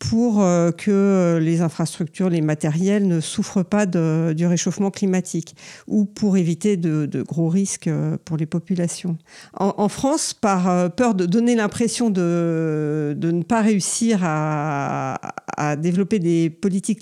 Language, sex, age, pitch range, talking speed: French, female, 50-69, 170-210 Hz, 145 wpm